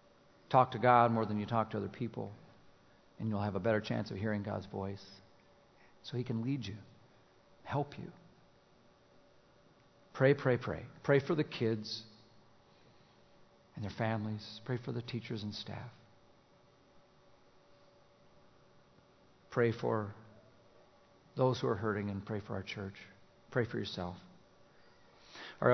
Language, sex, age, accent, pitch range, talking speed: English, male, 50-69, American, 110-130 Hz, 135 wpm